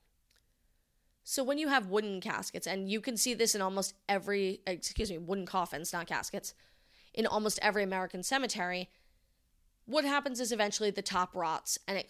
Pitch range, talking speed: 185-210 Hz, 170 wpm